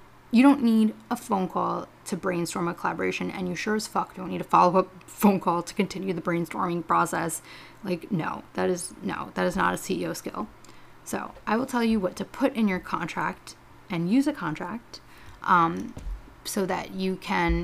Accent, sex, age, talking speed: American, female, 20-39, 195 wpm